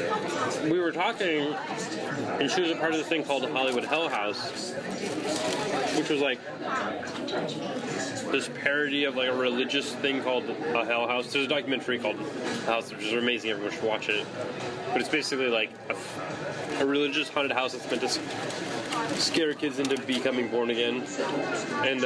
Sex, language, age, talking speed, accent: male, English, 20-39, 170 wpm, American